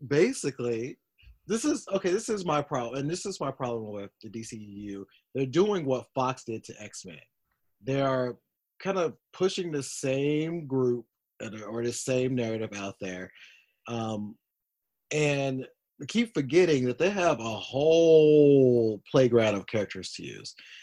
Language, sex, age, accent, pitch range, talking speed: English, male, 30-49, American, 105-140 Hz, 155 wpm